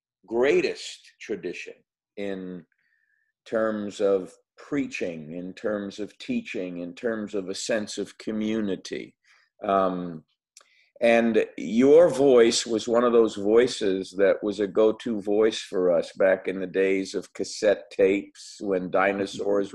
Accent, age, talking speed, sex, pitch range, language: American, 50-69, 130 wpm, male, 100-135 Hz, English